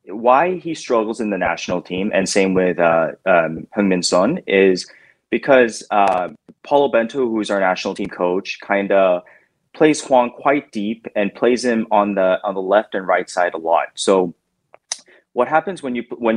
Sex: male